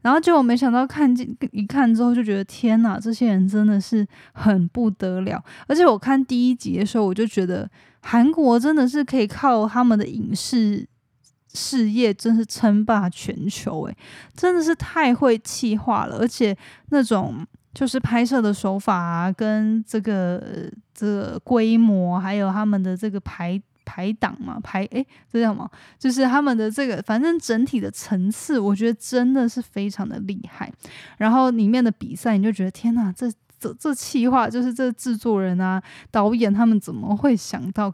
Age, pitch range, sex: 10-29, 200-245 Hz, female